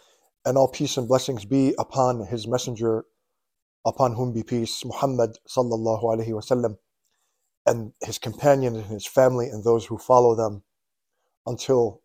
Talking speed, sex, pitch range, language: 140 wpm, male, 110-130 Hz, English